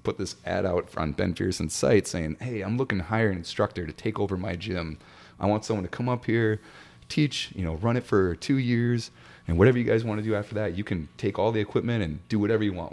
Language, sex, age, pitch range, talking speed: English, male, 30-49, 75-100 Hz, 260 wpm